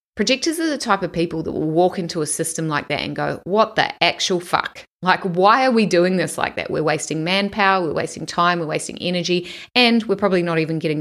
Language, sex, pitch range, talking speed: English, female, 155-185 Hz, 235 wpm